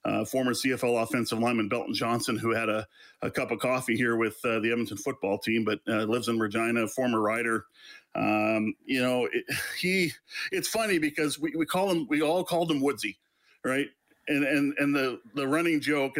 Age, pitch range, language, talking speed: 50-69, 115-160 Hz, English, 195 wpm